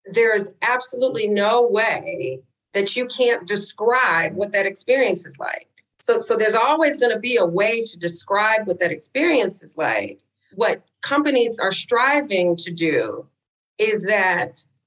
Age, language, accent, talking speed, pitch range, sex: 40-59, English, American, 155 wpm, 185-245 Hz, female